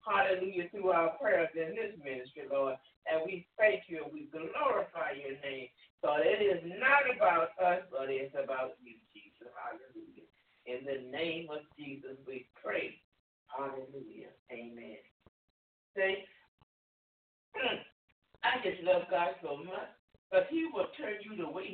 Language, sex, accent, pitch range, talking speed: English, male, American, 150-210 Hz, 145 wpm